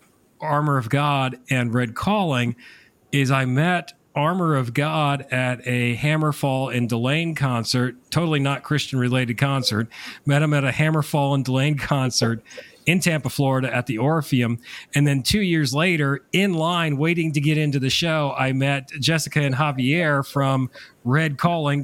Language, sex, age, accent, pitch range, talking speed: English, male, 40-59, American, 130-155 Hz, 155 wpm